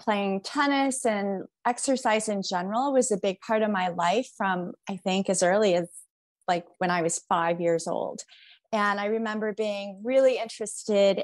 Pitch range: 185-230 Hz